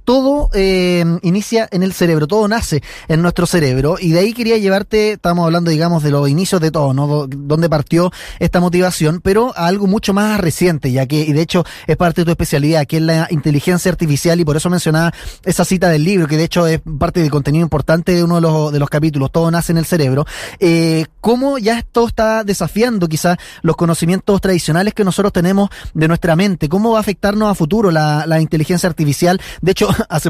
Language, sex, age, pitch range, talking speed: Spanish, male, 20-39, 160-195 Hz, 215 wpm